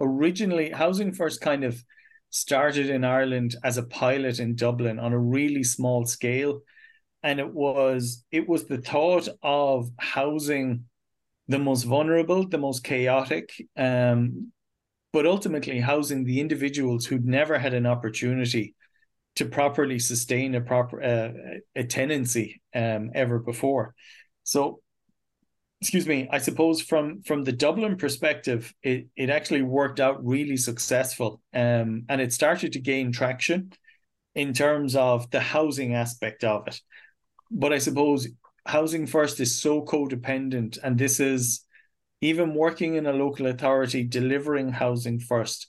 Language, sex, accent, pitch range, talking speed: English, male, Irish, 120-145 Hz, 140 wpm